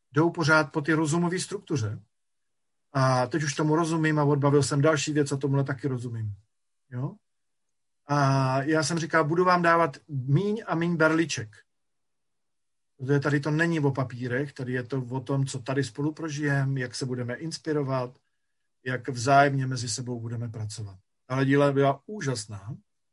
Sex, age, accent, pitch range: male, 40-59, native, 125-155 Hz